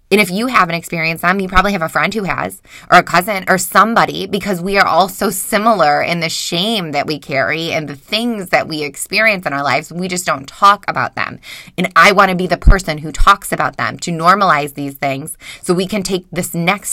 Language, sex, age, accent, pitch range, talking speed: English, female, 20-39, American, 150-185 Hz, 235 wpm